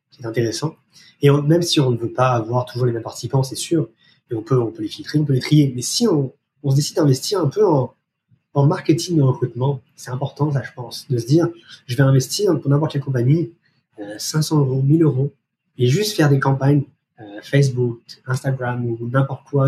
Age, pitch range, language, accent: 20-39, 125-150 Hz, French, French